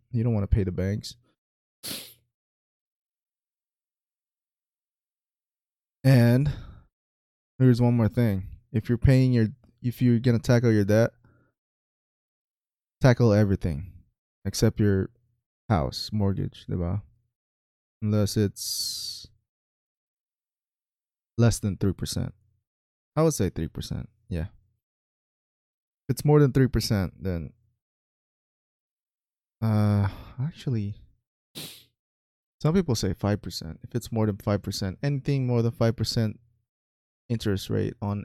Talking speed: 105 wpm